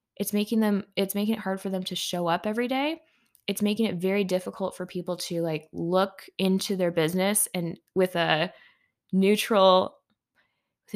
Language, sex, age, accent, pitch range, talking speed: English, female, 10-29, American, 185-230 Hz, 175 wpm